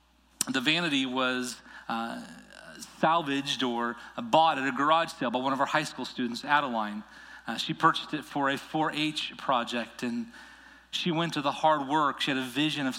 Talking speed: 180 wpm